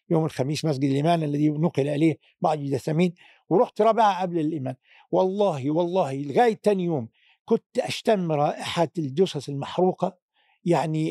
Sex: male